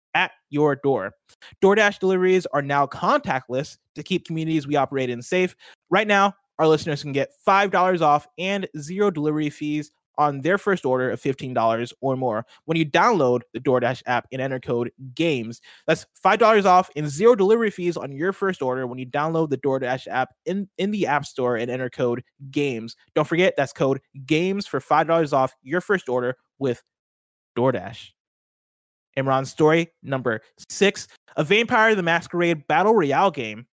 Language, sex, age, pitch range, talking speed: English, male, 20-39, 130-185 Hz, 175 wpm